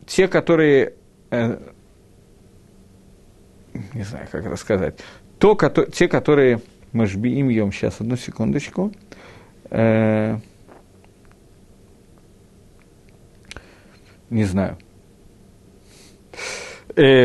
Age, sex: 50-69, male